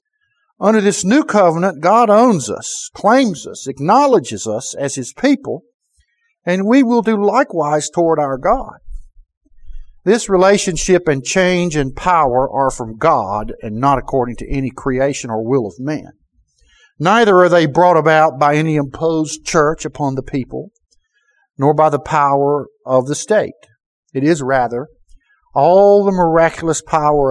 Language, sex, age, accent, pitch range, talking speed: English, male, 50-69, American, 135-195 Hz, 145 wpm